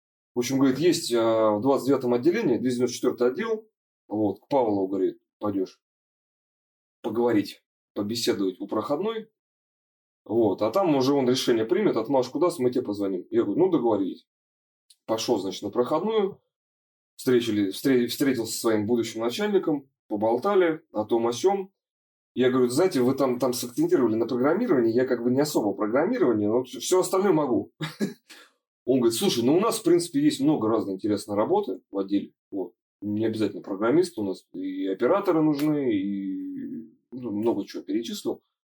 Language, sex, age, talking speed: Russian, male, 20-39, 155 wpm